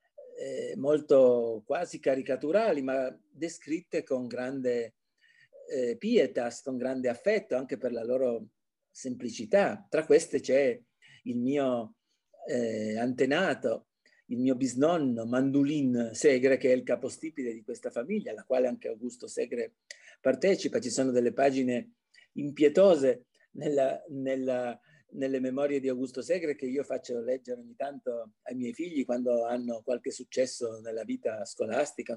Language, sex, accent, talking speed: Italian, male, native, 130 wpm